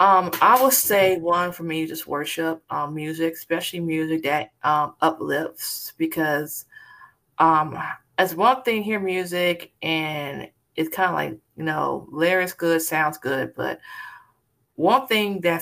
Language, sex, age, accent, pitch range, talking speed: English, female, 20-39, American, 155-175 Hz, 145 wpm